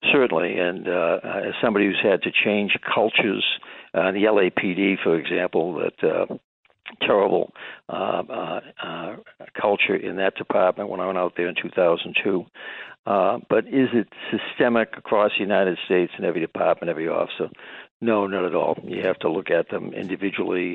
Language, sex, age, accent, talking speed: English, male, 60-79, American, 160 wpm